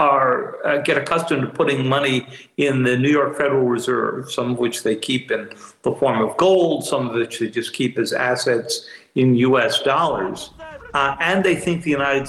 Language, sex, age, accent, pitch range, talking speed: English, male, 60-79, American, 115-145 Hz, 195 wpm